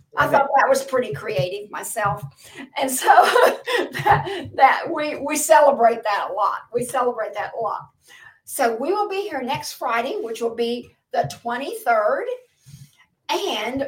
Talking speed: 150 wpm